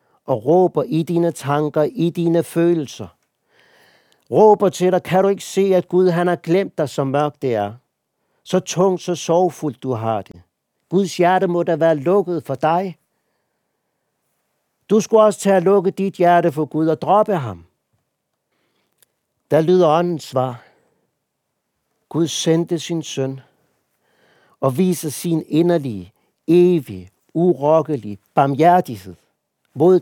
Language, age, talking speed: Danish, 60-79, 140 wpm